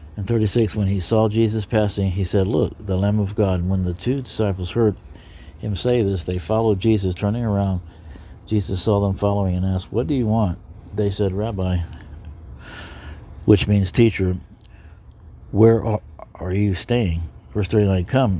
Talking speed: 165 wpm